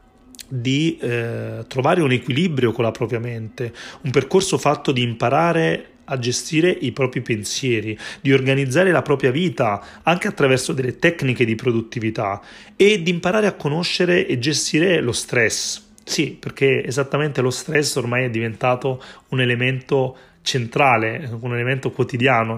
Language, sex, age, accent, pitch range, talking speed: Italian, male, 30-49, native, 120-145 Hz, 140 wpm